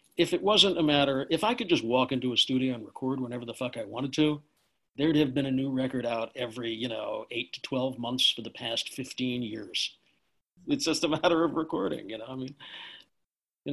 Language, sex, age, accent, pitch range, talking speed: English, male, 50-69, American, 115-140 Hz, 225 wpm